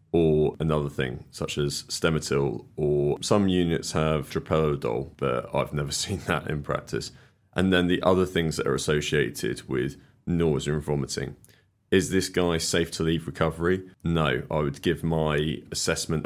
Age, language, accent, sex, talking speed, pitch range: 30-49, English, British, male, 160 wpm, 75-90 Hz